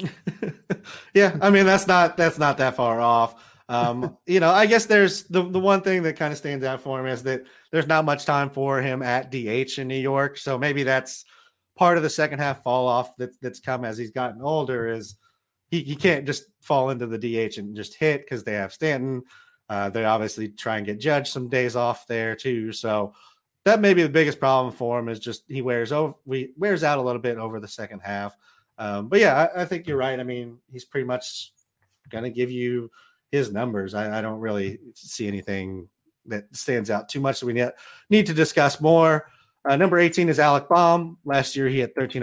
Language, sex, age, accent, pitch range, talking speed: English, male, 30-49, American, 120-160 Hz, 225 wpm